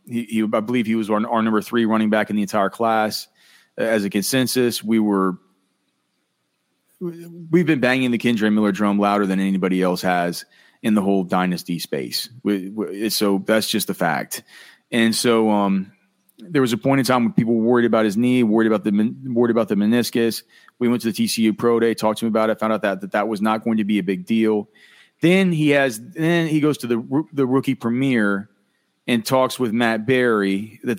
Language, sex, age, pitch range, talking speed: English, male, 30-49, 105-125 Hz, 215 wpm